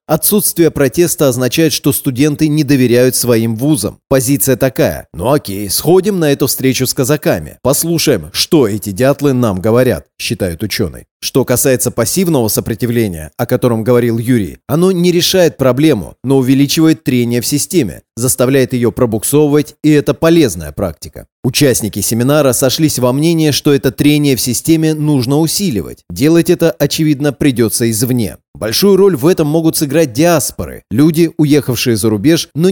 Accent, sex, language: native, male, Russian